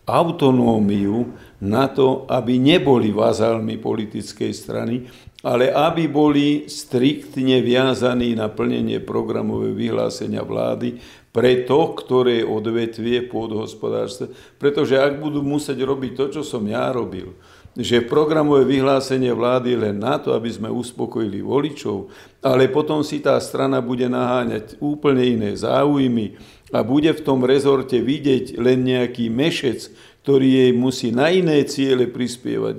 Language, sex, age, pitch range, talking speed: Slovak, male, 50-69, 110-135 Hz, 130 wpm